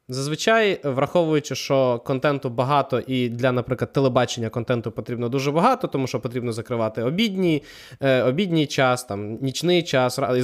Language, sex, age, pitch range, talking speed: Ukrainian, male, 20-39, 120-150 Hz, 145 wpm